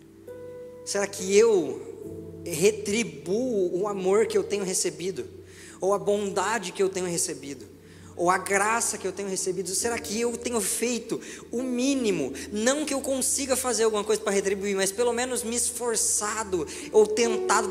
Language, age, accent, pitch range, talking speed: Portuguese, 20-39, Brazilian, 180-240 Hz, 160 wpm